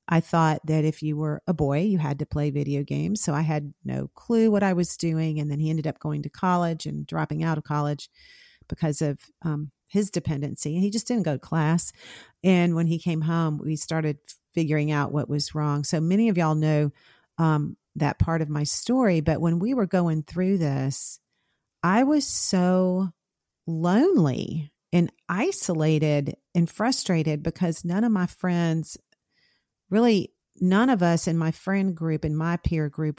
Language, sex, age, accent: English, female, 40-59, American